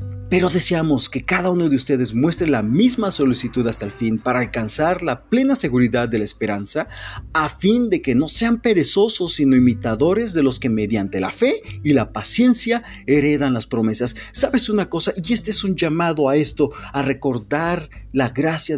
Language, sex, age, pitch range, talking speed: Spanish, male, 40-59, 125-180 Hz, 180 wpm